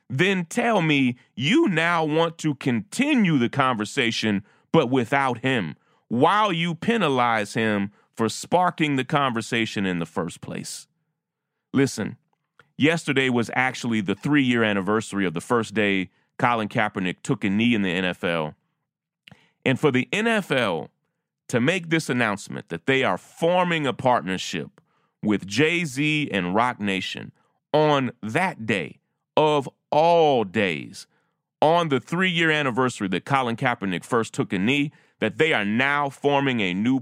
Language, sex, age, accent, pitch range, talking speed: English, male, 30-49, American, 110-160 Hz, 140 wpm